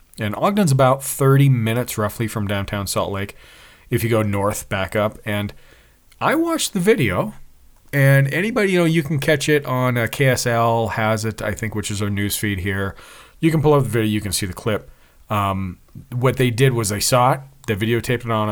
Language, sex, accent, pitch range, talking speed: English, male, American, 100-130 Hz, 210 wpm